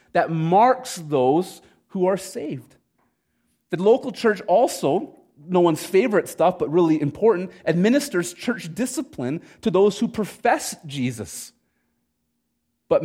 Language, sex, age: English, male, 30-49